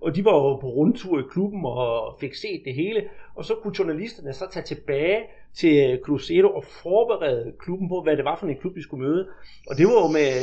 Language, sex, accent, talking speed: Danish, male, native, 230 wpm